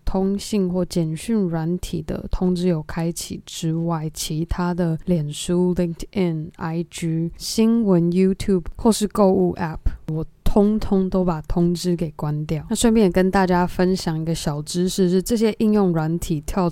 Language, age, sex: Chinese, 20-39, female